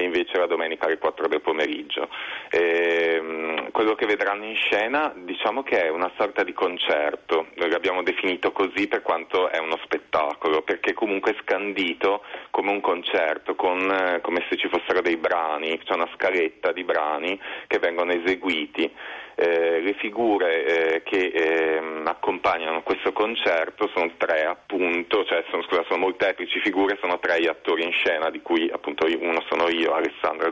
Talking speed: 165 wpm